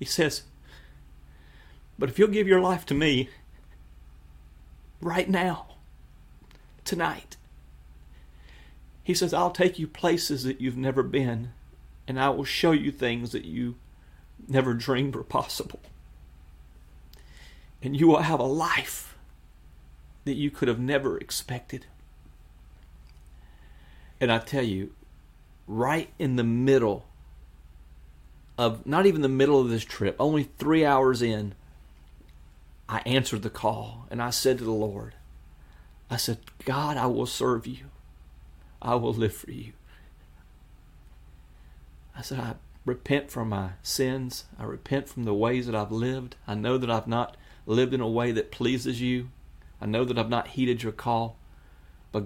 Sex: male